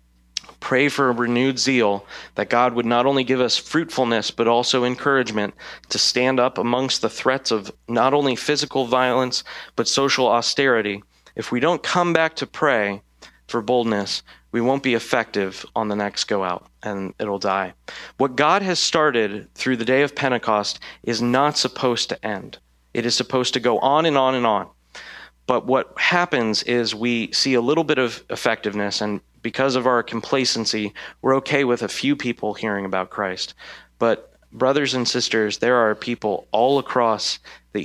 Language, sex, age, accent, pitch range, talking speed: English, male, 30-49, American, 105-130 Hz, 175 wpm